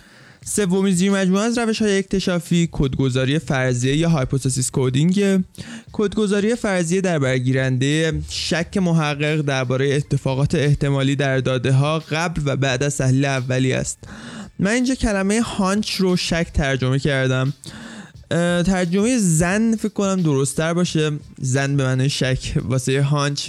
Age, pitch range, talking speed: 20-39, 135-175 Hz, 130 wpm